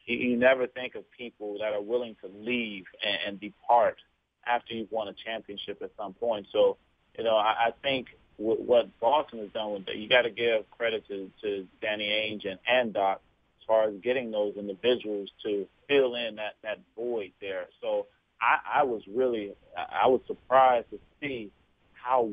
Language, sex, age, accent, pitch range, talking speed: English, male, 30-49, American, 105-125 Hz, 190 wpm